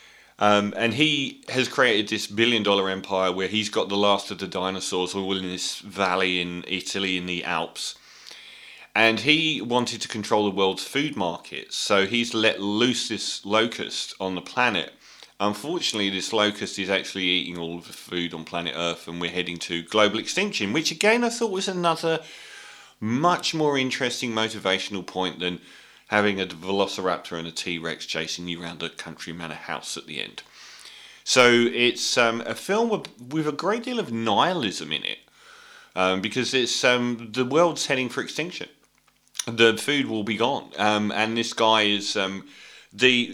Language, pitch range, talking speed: English, 95-120 Hz, 175 wpm